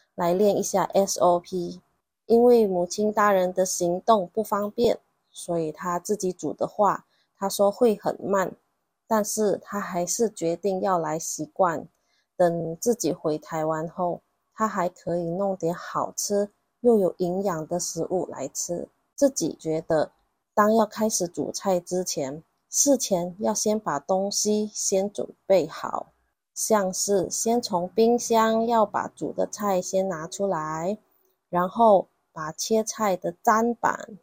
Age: 20-39